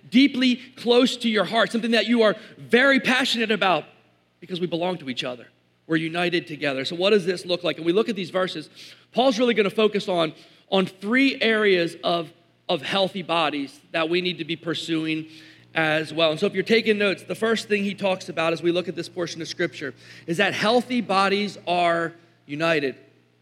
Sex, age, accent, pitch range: male, 40-59, American, 160-235 Hz